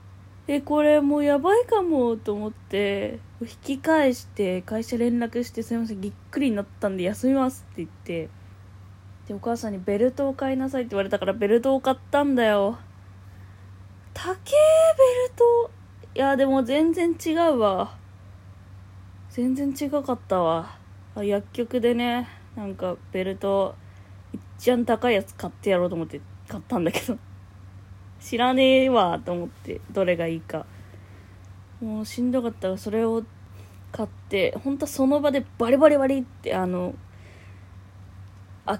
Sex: female